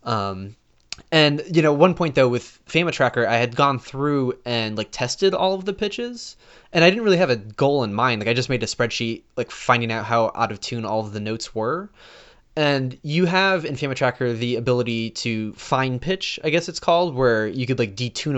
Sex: male